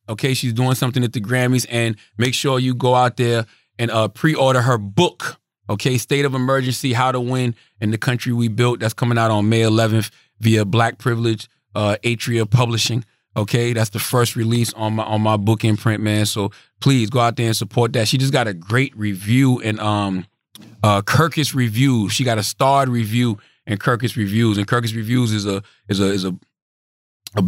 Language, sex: English, male